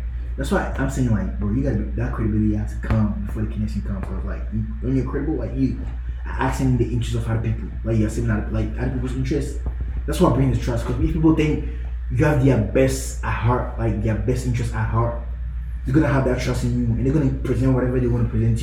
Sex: male